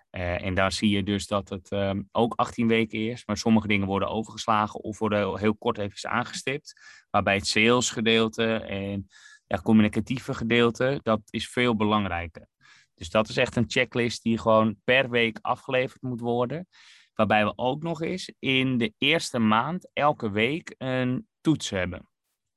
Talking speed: 170 wpm